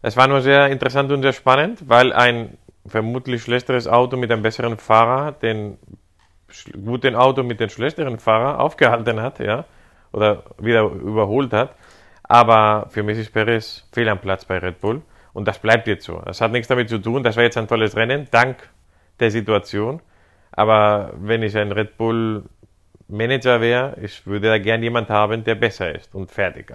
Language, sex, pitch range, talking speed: German, male, 100-120 Hz, 180 wpm